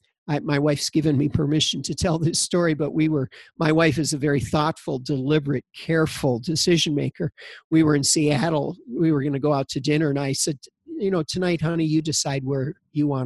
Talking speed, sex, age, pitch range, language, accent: 205 wpm, male, 50-69, 145-170 Hz, English, American